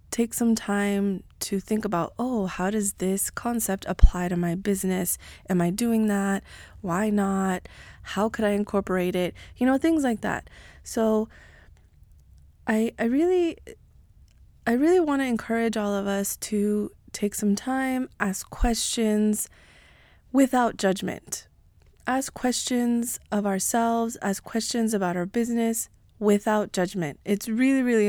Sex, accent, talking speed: female, American, 140 wpm